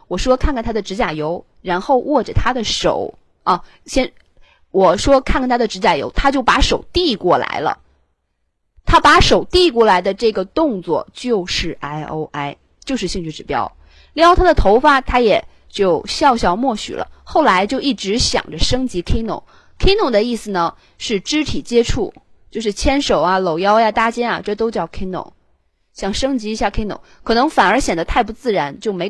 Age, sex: 20-39, female